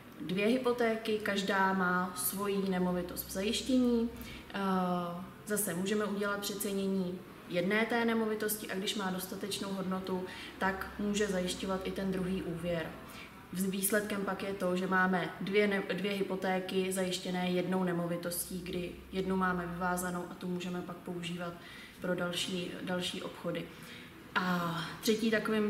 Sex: female